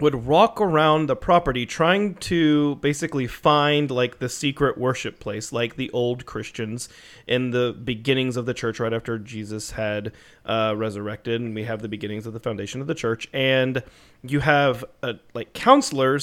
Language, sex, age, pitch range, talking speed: English, male, 30-49, 120-150 Hz, 175 wpm